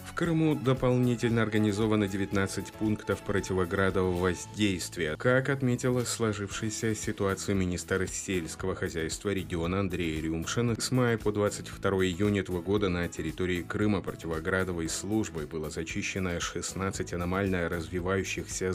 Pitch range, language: 85-105 Hz, Russian